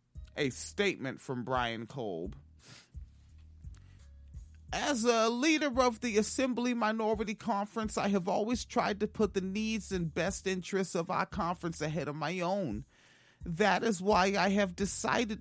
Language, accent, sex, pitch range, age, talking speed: English, American, male, 170-245 Hz, 30-49, 145 wpm